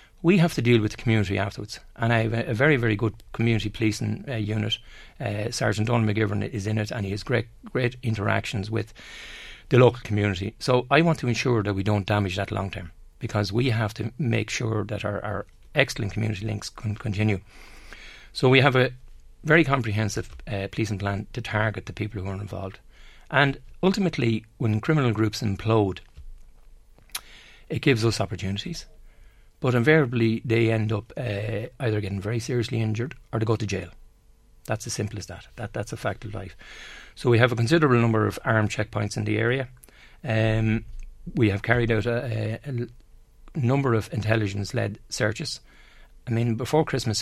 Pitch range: 105-120 Hz